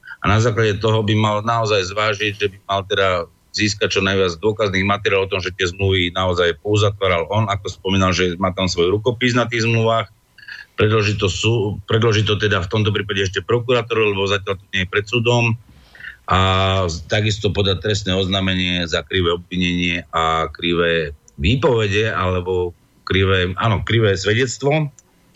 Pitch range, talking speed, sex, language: 95-110 Hz, 165 wpm, male, Slovak